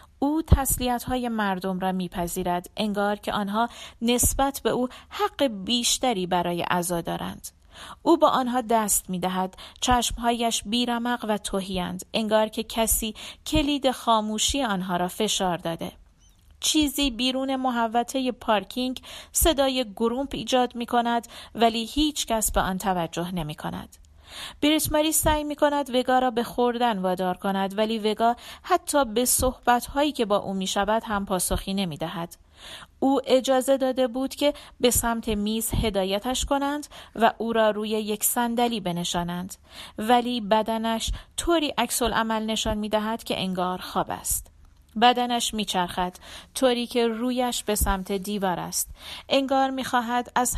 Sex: female